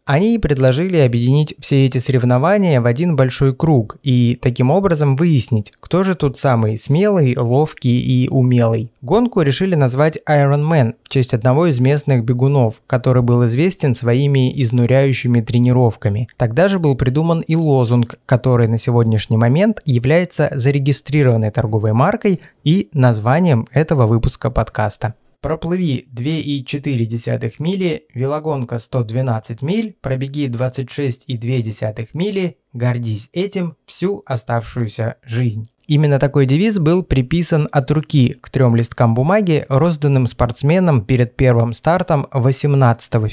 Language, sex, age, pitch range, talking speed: Russian, male, 20-39, 120-155 Hz, 125 wpm